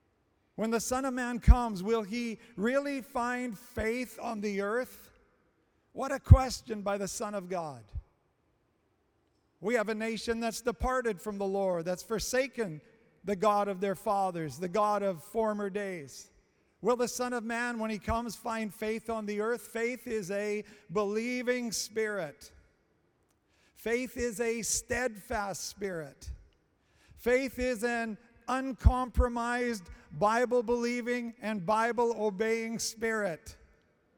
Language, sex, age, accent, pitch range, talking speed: English, male, 50-69, American, 200-235 Hz, 130 wpm